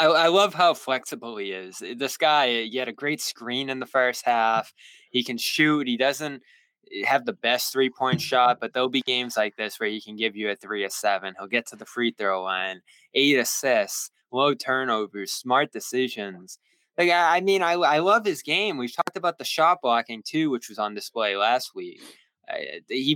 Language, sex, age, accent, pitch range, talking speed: English, male, 20-39, American, 105-135 Hz, 200 wpm